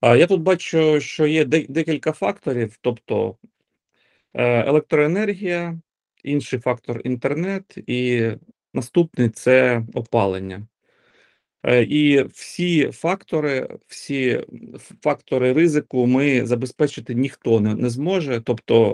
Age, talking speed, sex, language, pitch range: 40-59, 90 wpm, male, Ukrainian, 115-145 Hz